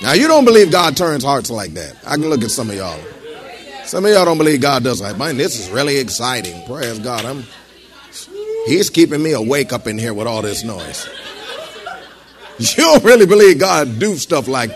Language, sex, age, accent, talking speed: English, male, 50-69, American, 205 wpm